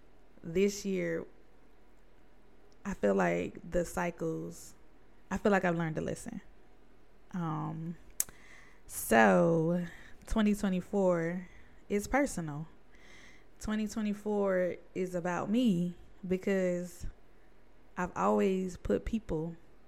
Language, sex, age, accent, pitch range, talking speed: English, female, 20-39, American, 170-210 Hz, 85 wpm